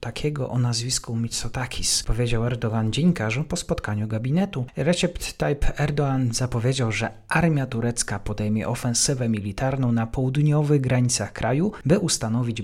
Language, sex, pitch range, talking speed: Polish, male, 105-140 Hz, 125 wpm